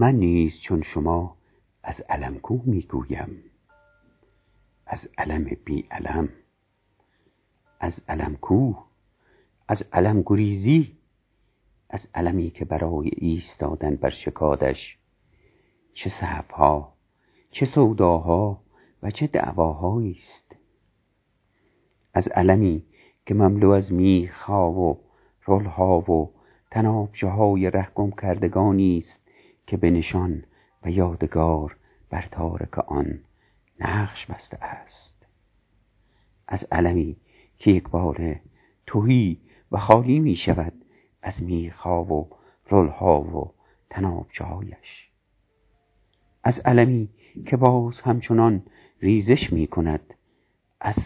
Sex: male